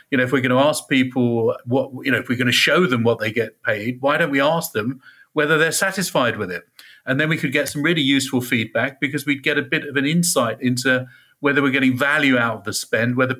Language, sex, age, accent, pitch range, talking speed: English, male, 40-59, British, 120-145 Hz, 260 wpm